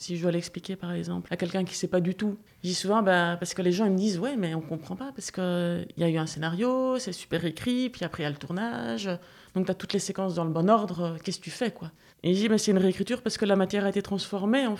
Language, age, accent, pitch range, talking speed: French, 30-49, French, 175-210 Hz, 325 wpm